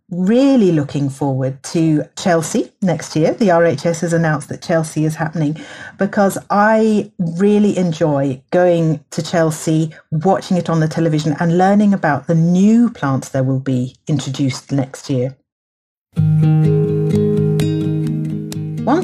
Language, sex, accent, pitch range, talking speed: English, female, British, 145-180 Hz, 125 wpm